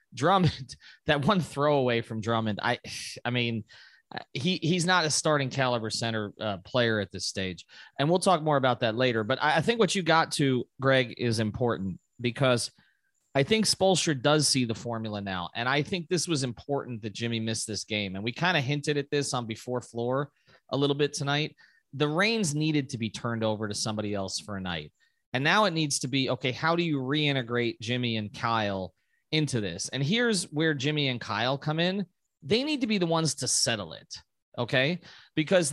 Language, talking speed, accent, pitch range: English, 205 wpm, American, 120-165 Hz